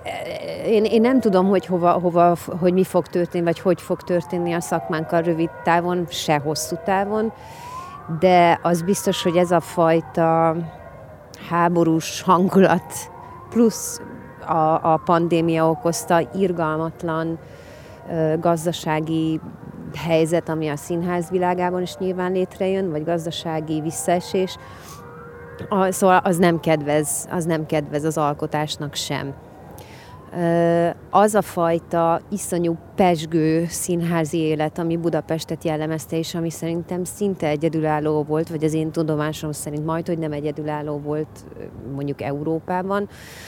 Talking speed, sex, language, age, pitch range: 115 wpm, female, Hungarian, 30-49, 155-180 Hz